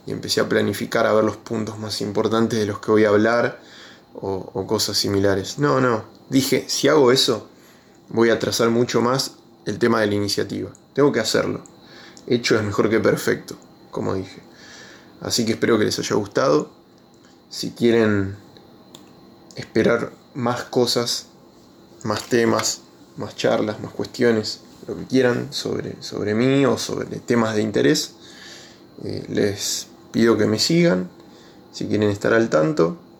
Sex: male